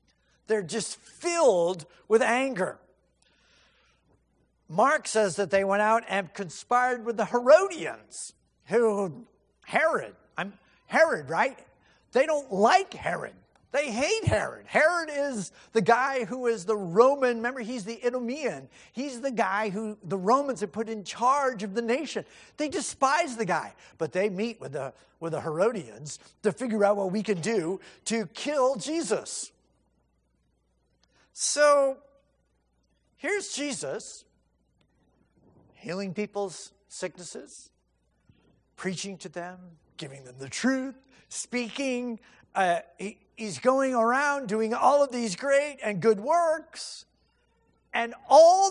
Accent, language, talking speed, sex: American, English, 125 wpm, male